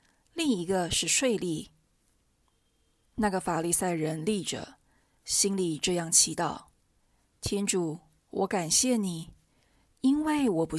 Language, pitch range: Chinese, 175-225 Hz